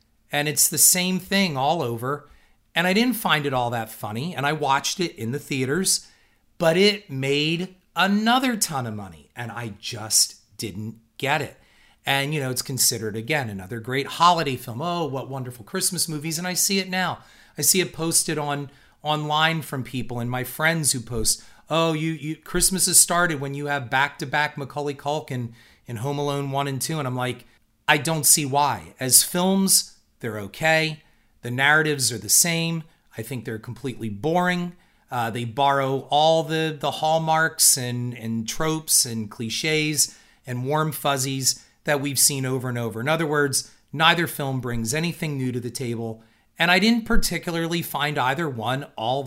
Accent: American